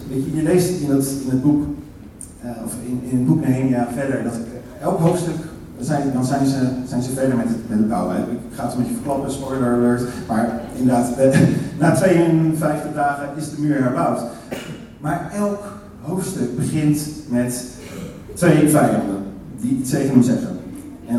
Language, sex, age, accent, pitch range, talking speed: Dutch, male, 40-59, Dutch, 125-155 Hz, 135 wpm